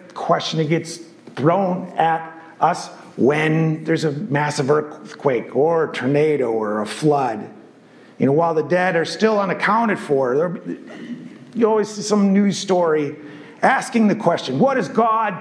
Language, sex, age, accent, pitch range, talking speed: English, male, 50-69, American, 165-225 Hz, 150 wpm